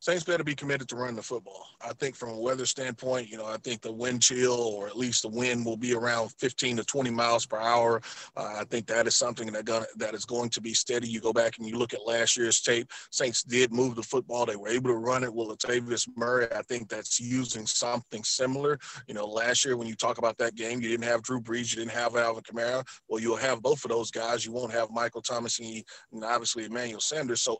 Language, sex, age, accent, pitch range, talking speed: English, male, 30-49, American, 115-125 Hz, 250 wpm